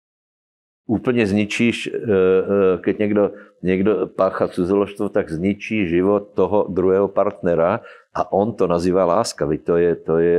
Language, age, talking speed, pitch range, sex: Slovak, 50-69, 125 wpm, 85-100 Hz, male